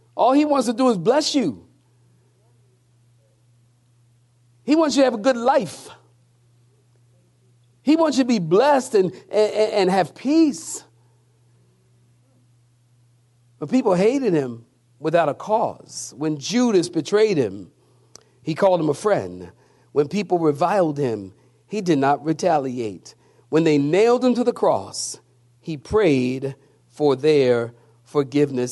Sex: male